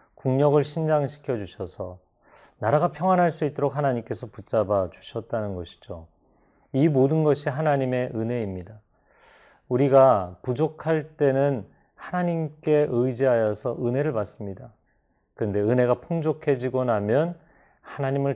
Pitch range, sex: 105-140 Hz, male